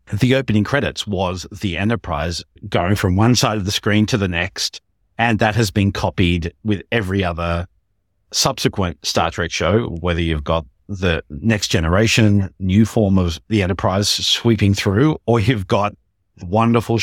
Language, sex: English, male